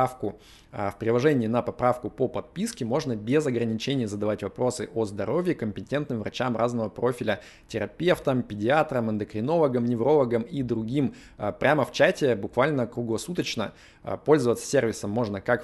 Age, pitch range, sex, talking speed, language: 20-39, 110-135 Hz, male, 125 wpm, Russian